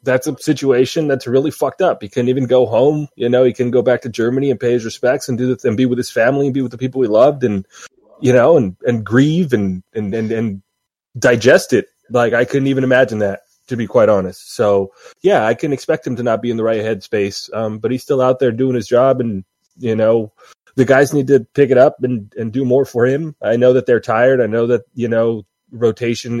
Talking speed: 250 wpm